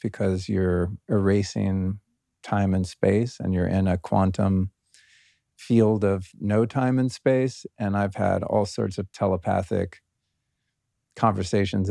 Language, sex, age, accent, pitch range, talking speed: English, male, 40-59, American, 95-110 Hz, 125 wpm